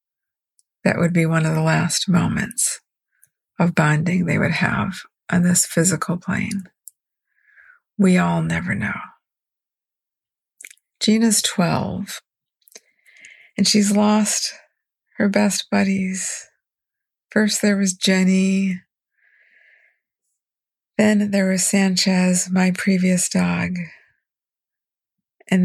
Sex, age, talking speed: female, 50-69, 95 wpm